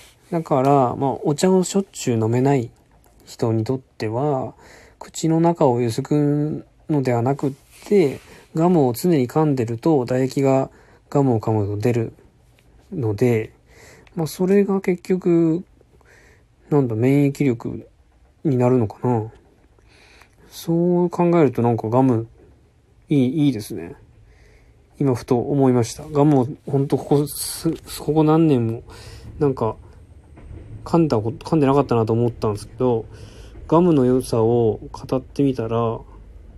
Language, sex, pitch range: Japanese, male, 115-150 Hz